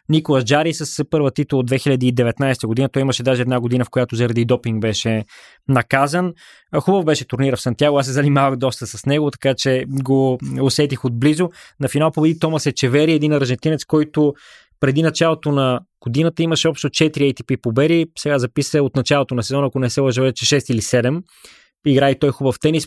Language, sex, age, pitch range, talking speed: Bulgarian, male, 20-39, 130-150 Hz, 185 wpm